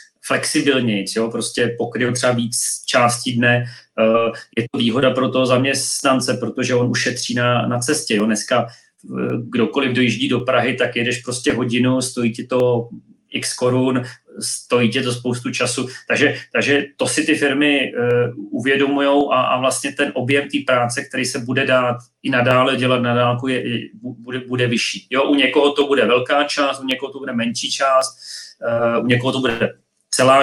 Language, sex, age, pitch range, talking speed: Czech, male, 30-49, 120-145 Hz, 165 wpm